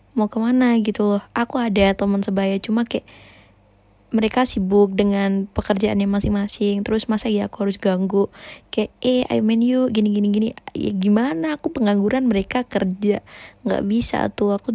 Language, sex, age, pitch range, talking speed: Indonesian, female, 20-39, 200-220 Hz, 145 wpm